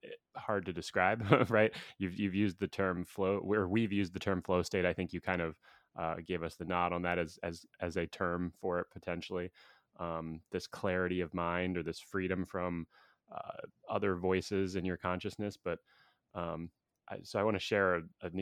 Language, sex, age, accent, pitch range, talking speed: English, male, 20-39, American, 90-105 Hz, 195 wpm